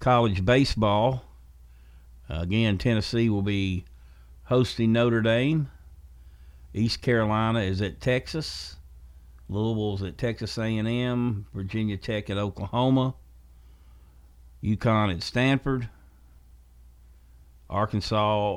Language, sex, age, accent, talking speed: English, male, 50-69, American, 85 wpm